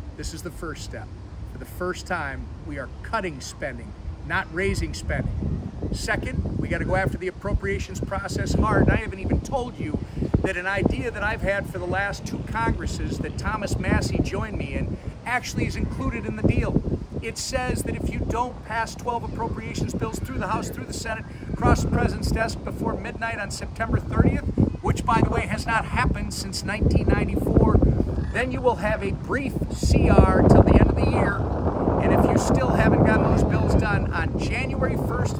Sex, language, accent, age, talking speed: male, English, American, 50-69, 190 wpm